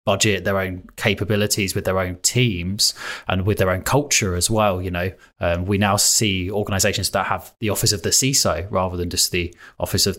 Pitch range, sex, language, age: 90-105 Hz, male, English, 20-39